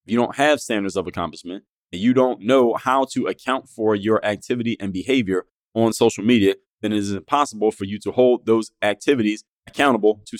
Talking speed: 190 wpm